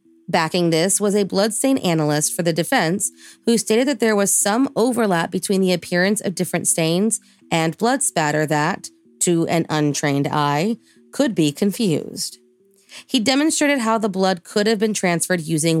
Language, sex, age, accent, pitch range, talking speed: English, female, 30-49, American, 165-215 Hz, 165 wpm